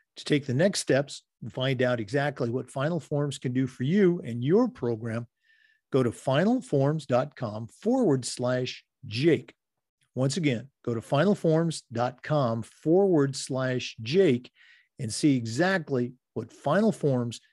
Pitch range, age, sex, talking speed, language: 125-170 Hz, 50-69, male, 135 wpm, English